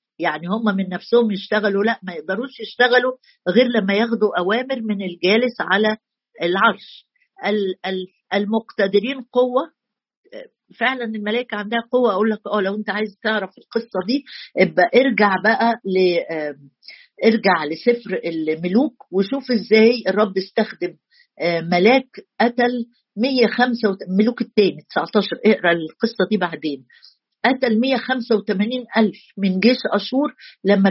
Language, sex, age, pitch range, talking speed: Arabic, female, 50-69, 190-240 Hz, 115 wpm